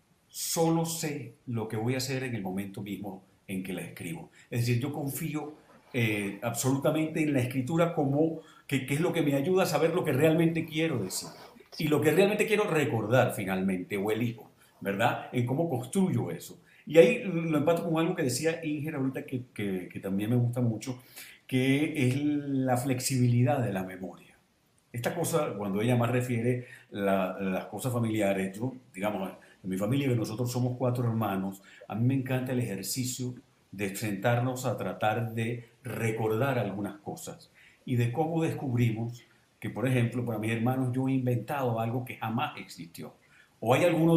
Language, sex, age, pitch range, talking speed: Spanish, male, 50-69, 115-150 Hz, 180 wpm